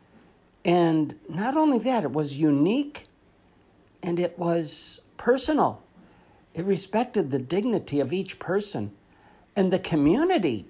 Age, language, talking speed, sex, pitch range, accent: 60-79, English, 120 wpm, male, 125-190 Hz, American